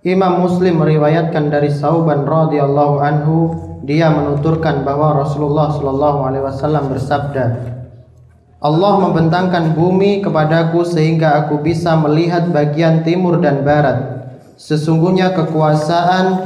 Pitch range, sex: 145-180 Hz, male